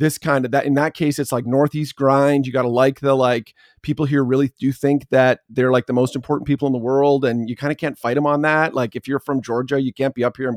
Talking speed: 295 wpm